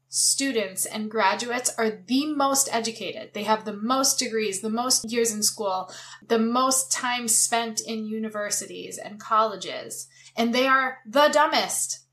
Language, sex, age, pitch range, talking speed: English, female, 20-39, 205-260 Hz, 150 wpm